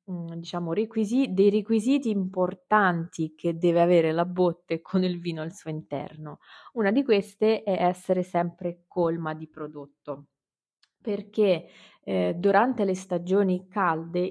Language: Italian